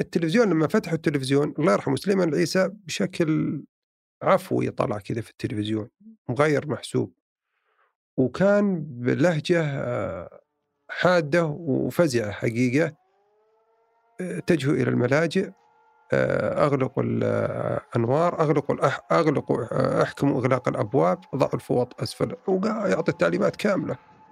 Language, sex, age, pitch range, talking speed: Arabic, male, 50-69, 140-205 Hz, 95 wpm